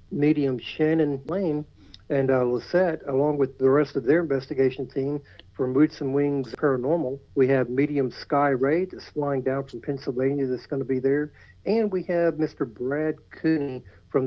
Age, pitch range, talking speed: 60-79, 130-145 Hz, 170 wpm